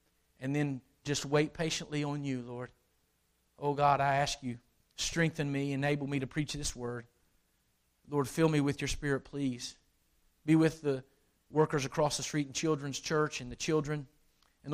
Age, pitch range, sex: 40-59, 130-175 Hz, male